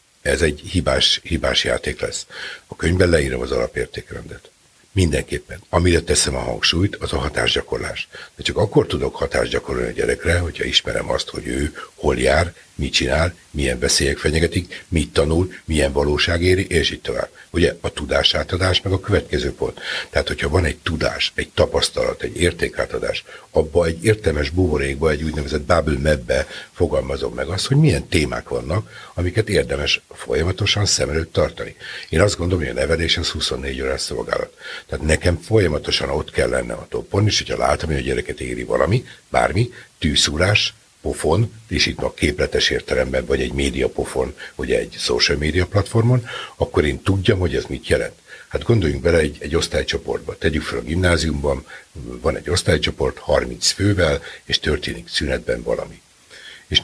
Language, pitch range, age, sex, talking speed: Hungarian, 75-110 Hz, 60-79, male, 160 wpm